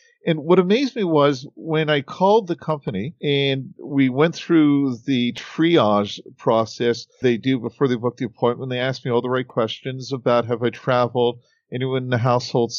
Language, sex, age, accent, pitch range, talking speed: English, male, 50-69, American, 125-155 Hz, 185 wpm